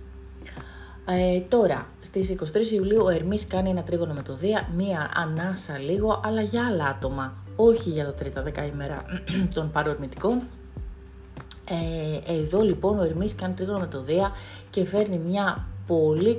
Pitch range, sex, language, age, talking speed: 140-195 Hz, female, Greek, 30-49, 145 wpm